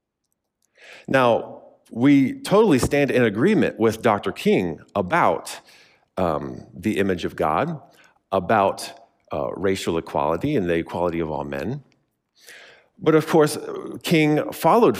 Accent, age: American, 40-59